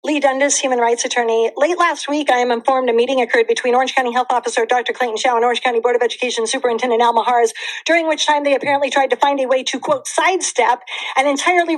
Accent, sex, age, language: American, female, 40-59, English